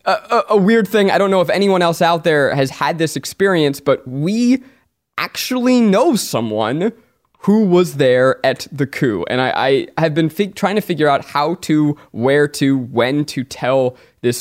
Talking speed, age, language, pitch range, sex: 185 wpm, 20-39, English, 130-185 Hz, male